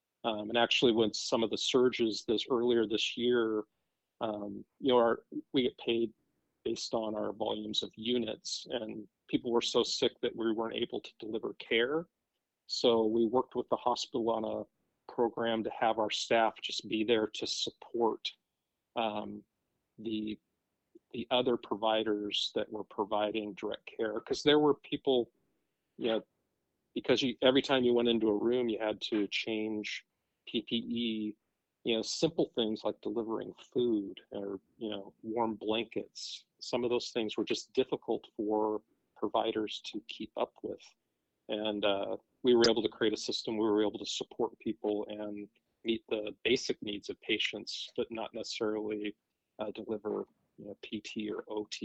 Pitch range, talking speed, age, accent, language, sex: 105-120 Hz, 165 wpm, 40-59, American, English, male